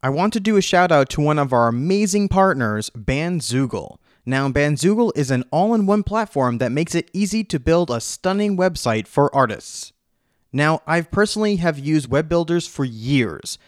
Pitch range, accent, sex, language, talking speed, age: 135-185 Hz, American, male, English, 175 wpm, 30-49